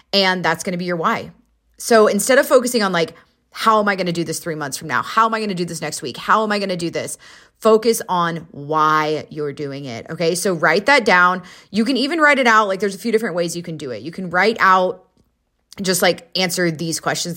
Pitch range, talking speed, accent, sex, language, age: 160-190 Hz, 265 wpm, American, female, English, 30-49